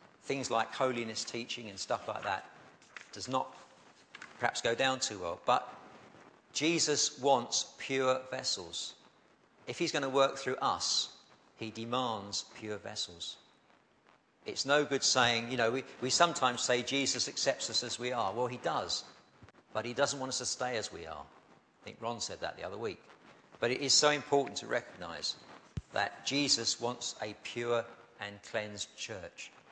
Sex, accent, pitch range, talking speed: male, British, 105-130 Hz, 170 wpm